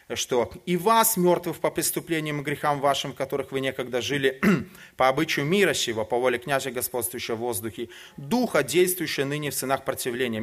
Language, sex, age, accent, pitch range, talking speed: Russian, male, 30-49, native, 110-155 Hz, 175 wpm